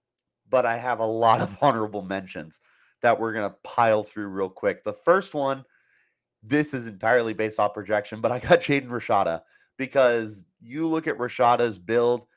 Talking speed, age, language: 175 wpm, 30-49, English